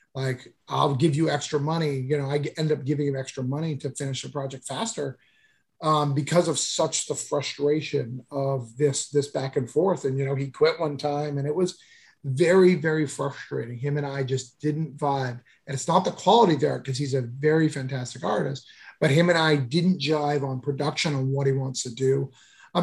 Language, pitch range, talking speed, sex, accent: English, 140-170 Hz, 205 wpm, male, American